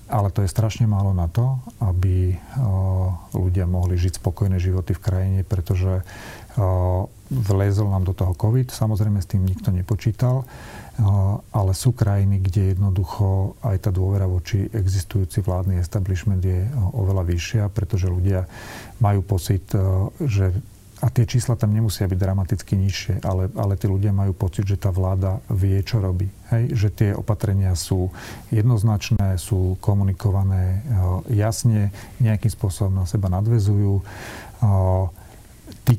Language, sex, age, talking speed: Slovak, male, 40-59, 135 wpm